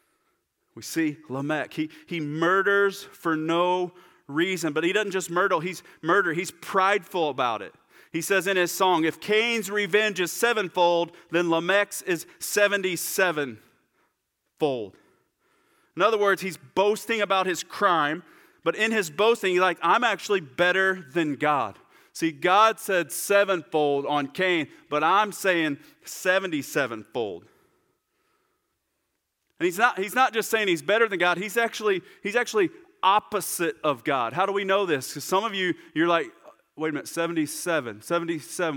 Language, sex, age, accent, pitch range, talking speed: English, male, 40-59, American, 160-210 Hz, 150 wpm